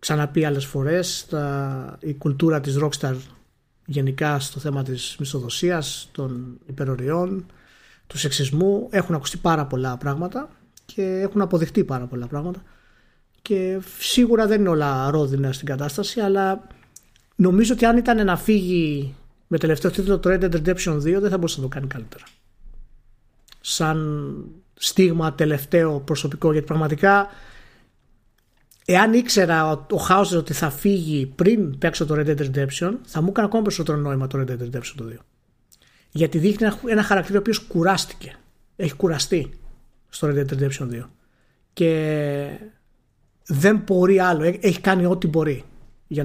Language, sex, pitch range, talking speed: Greek, male, 140-190 Hz, 140 wpm